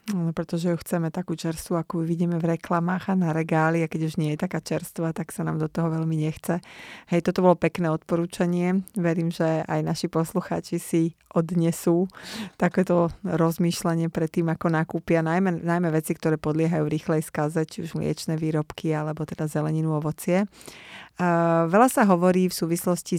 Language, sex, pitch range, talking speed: Slovak, female, 160-175 Hz, 165 wpm